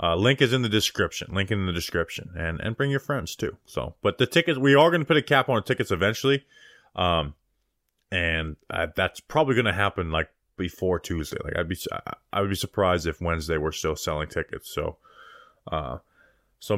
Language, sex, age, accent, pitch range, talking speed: English, male, 20-39, American, 90-135 Hz, 205 wpm